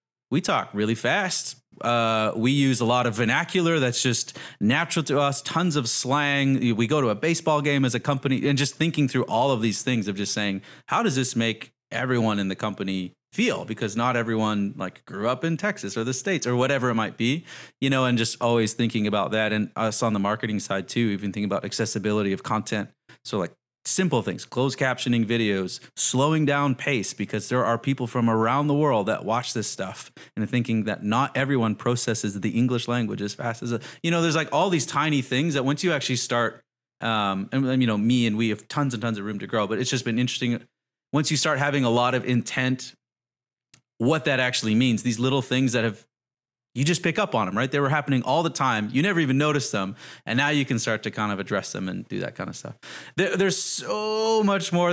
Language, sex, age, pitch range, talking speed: English, male, 30-49, 115-140 Hz, 225 wpm